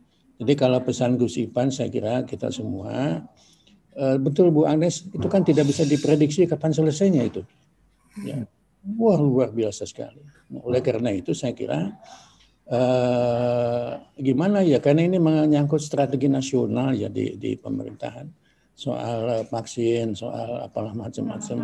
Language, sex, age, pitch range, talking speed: Indonesian, male, 60-79, 125-155 Hz, 135 wpm